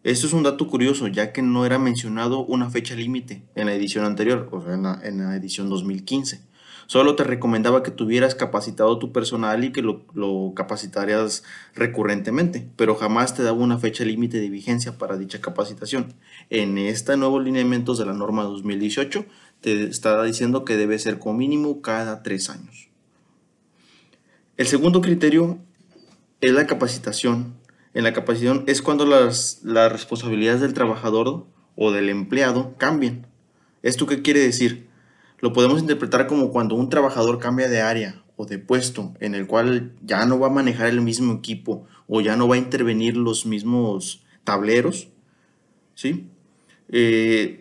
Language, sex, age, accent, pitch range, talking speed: Spanish, male, 30-49, Mexican, 110-130 Hz, 160 wpm